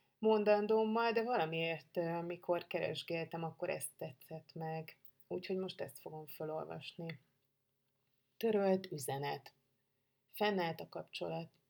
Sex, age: female, 30-49